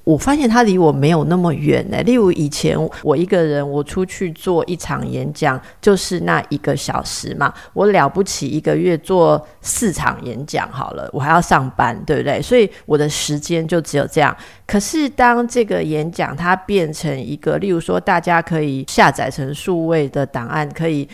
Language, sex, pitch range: Chinese, female, 150-190 Hz